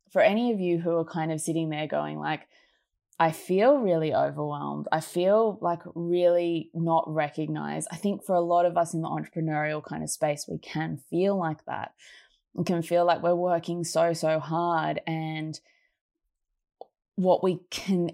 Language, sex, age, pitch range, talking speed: English, female, 20-39, 160-175 Hz, 175 wpm